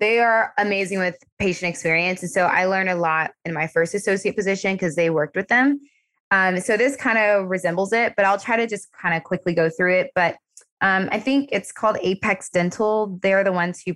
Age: 20-39